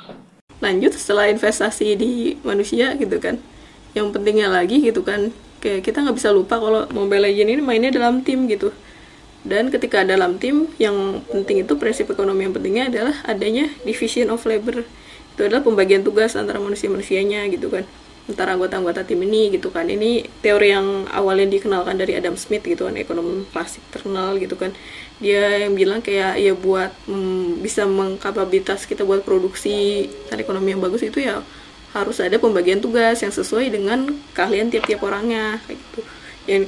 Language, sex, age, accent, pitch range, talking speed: Indonesian, female, 20-39, native, 200-270 Hz, 165 wpm